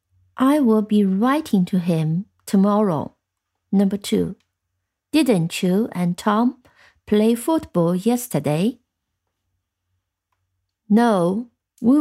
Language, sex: Chinese, female